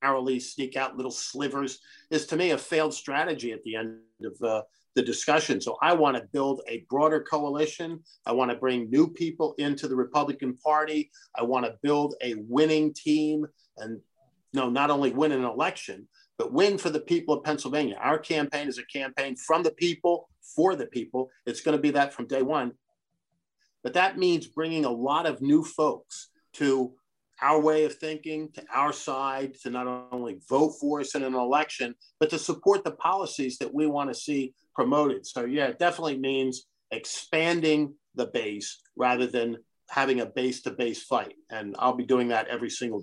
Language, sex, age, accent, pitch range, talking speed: English, male, 50-69, American, 125-155 Hz, 185 wpm